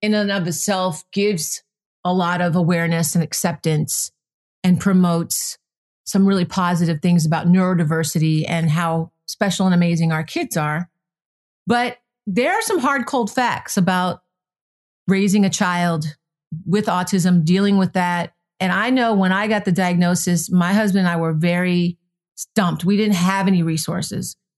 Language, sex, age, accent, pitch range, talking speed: English, female, 40-59, American, 170-205 Hz, 155 wpm